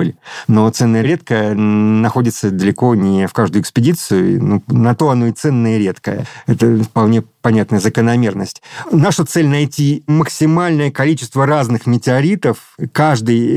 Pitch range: 110-140 Hz